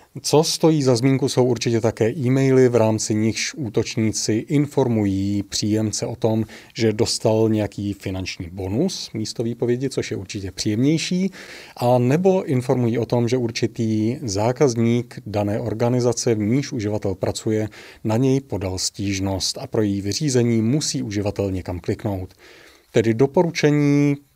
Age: 30-49